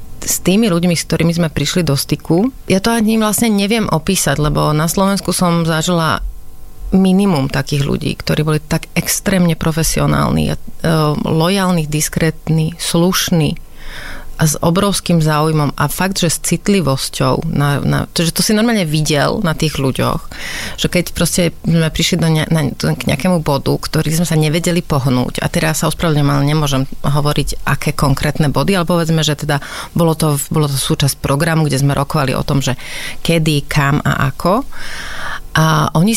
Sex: female